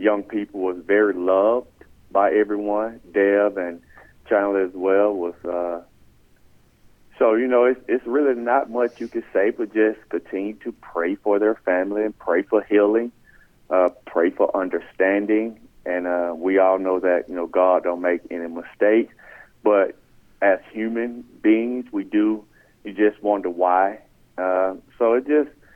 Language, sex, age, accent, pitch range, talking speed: English, male, 40-59, American, 90-115 Hz, 160 wpm